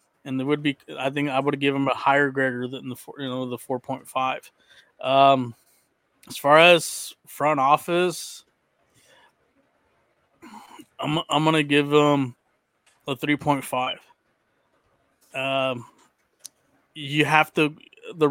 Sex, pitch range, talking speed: male, 130-150 Hz, 125 wpm